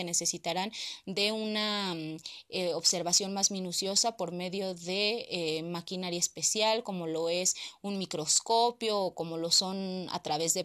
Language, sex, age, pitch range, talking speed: English, female, 20-39, 180-225 Hz, 140 wpm